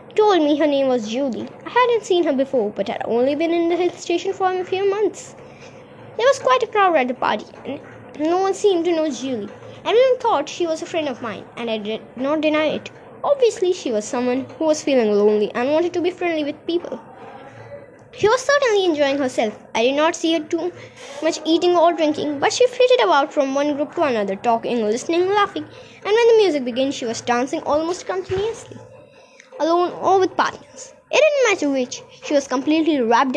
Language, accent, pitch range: Hindi, native, 270-390 Hz